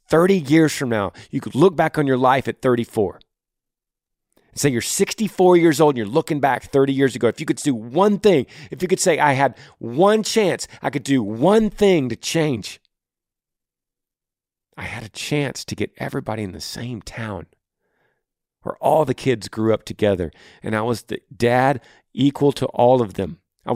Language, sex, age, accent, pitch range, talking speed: English, male, 40-59, American, 110-150 Hz, 190 wpm